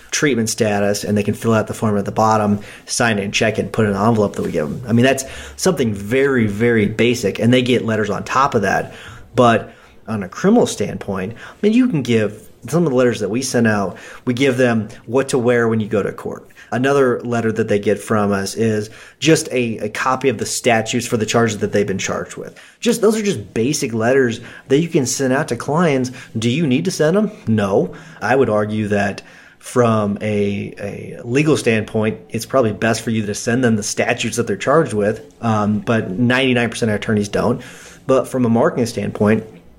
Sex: male